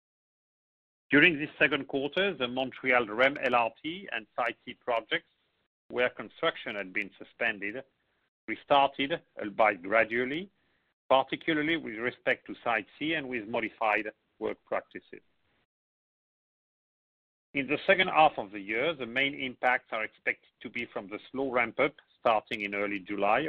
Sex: male